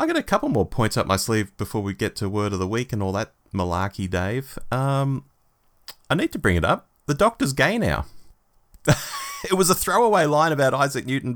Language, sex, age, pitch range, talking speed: English, male, 30-49, 90-125 Hz, 215 wpm